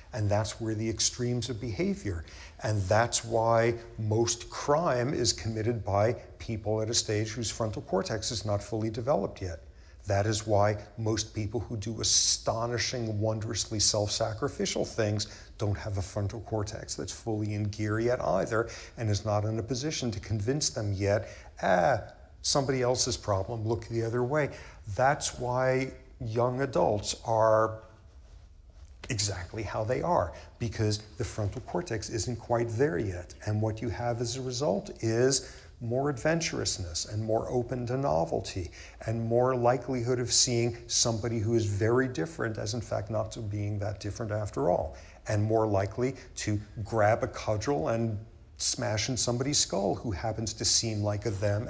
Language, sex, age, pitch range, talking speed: English, male, 50-69, 105-120 Hz, 160 wpm